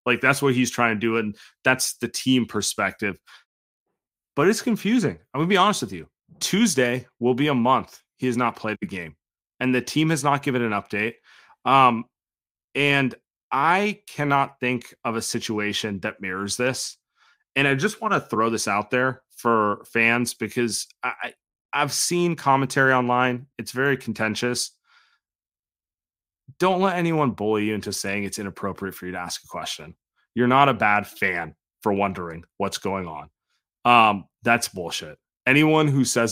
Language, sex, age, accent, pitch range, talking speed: English, male, 30-49, American, 105-140 Hz, 170 wpm